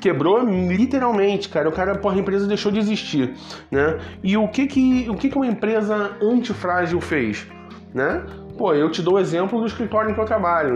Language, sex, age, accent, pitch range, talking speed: Portuguese, male, 20-39, Brazilian, 150-200 Hz, 205 wpm